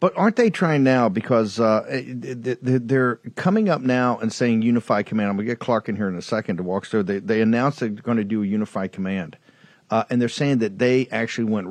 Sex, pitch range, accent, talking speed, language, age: male, 105-130 Hz, American, 230 wpm, English, 50-69